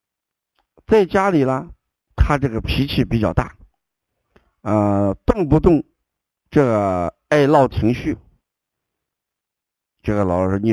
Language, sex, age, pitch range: Chinese, male, 60-79, 105-155 Hz